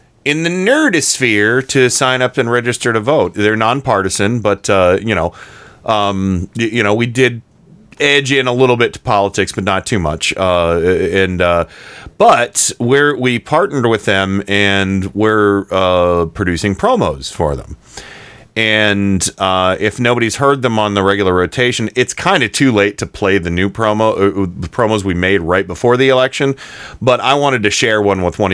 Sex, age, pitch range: male, 40-59, 90-115 Hz